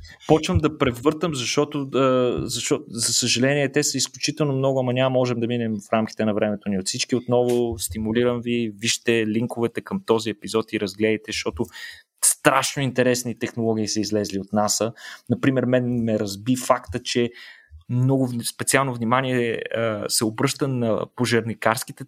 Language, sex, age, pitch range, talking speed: Bulgarian, male, 20-39, 105-130 Hz, 145 wpm